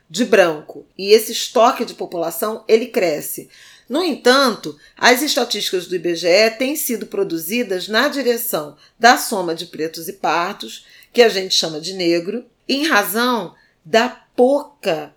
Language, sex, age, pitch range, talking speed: Portuguese, female, 40-59, 175-230 Hz, 140 wpm